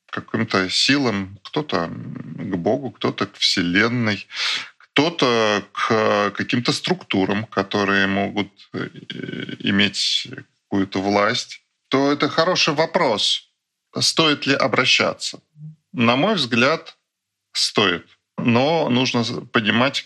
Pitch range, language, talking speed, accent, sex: 95-125 Hz, Russian, 95 wpm, native, male